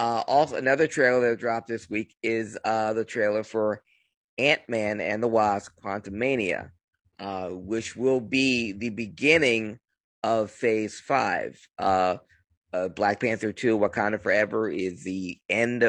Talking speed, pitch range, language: 145 wpm, 100-115 Hz, English